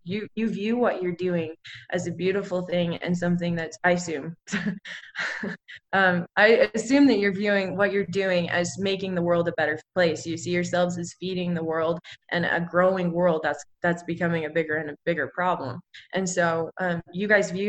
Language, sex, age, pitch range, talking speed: English, female, 20-39, 170-200 Hz, 195 wpm